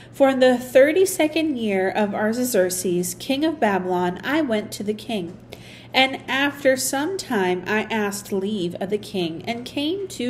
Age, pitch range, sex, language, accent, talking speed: 40-59, 190-275 Hz, female, English, American, 165 wpm